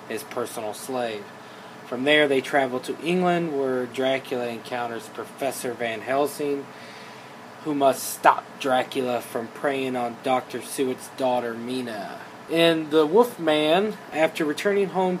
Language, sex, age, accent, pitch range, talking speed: English, male, 20-39, American, 135-165 Hz, 130 wpm